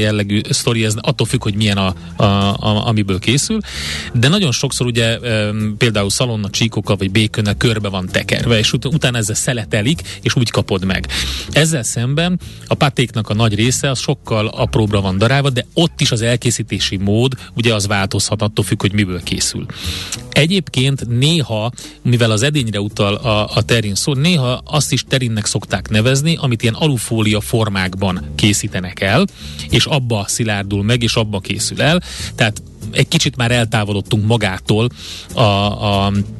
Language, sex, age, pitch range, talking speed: Hungarian, male, 30-49, 105-130 Hz, 160 wpm